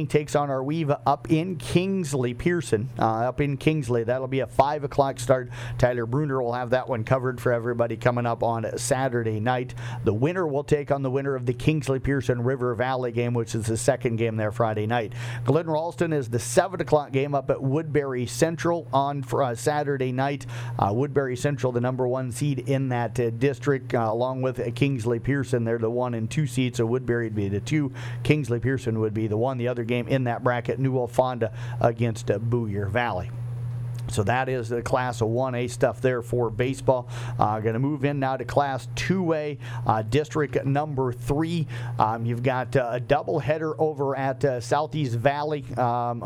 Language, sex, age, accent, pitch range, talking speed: English, male, 50-69, American, 120-140 Hz, 195 wpm